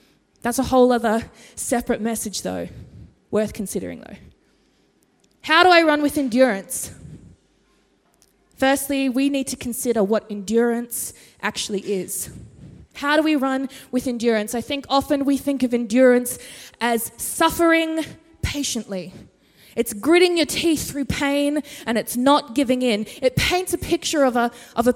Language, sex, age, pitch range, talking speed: English, female, 20-39, 220-280 Hz, 140 wpm